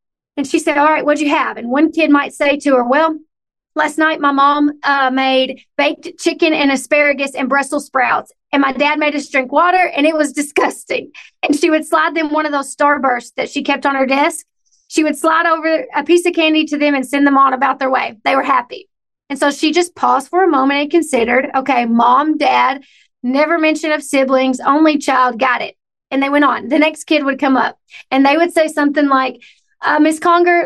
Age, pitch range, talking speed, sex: 40-59, 275-320 Hz, 225 wpm, female